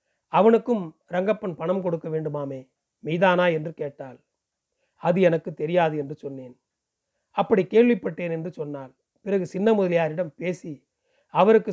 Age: 40-59